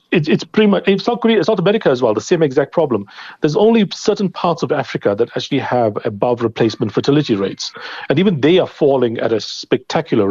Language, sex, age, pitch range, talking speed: English, male, 40-59, 120-170 Hz, 215 wpm